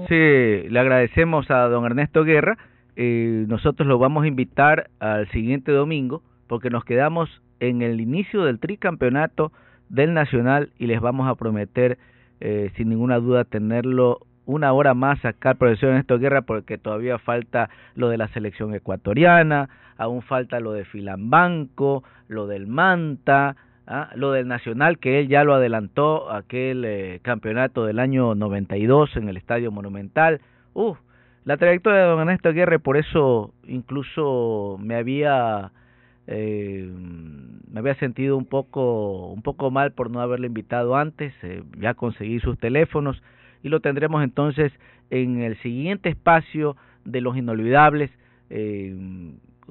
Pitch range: 115-145 Hz